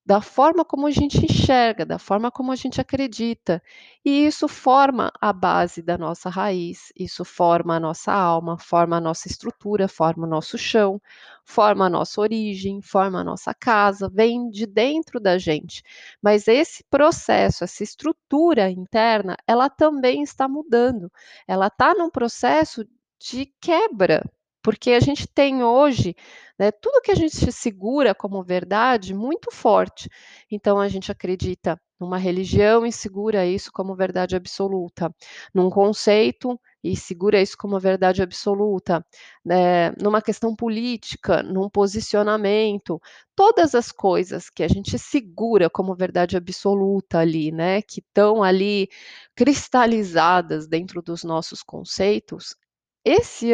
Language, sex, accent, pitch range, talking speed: Portuguese, female, Brazilian, 185-250 Hz, 140 wpm